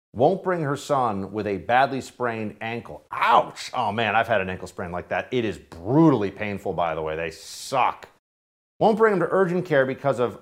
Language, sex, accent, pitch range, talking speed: English, male, American, 95-150 Hz, 205 wpm